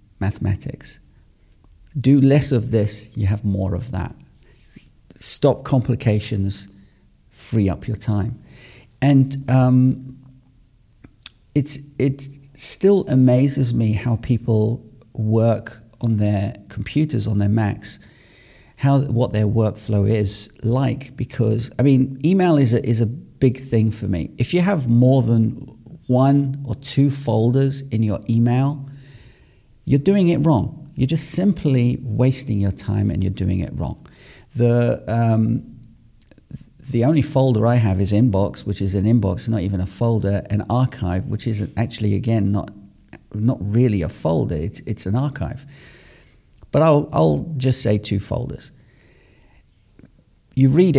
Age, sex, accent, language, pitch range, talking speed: 40-59, male, British, English, 105-135 Hz, 140 wpm